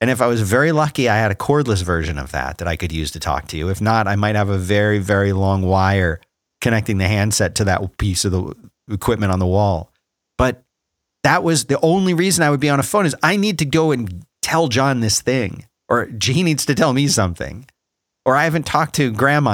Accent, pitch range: American, 100-145 Hz